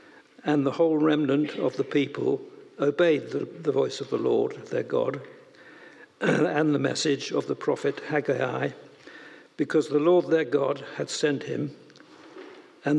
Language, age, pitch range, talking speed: English, 60-79, 140-165 Hz, 150 wpm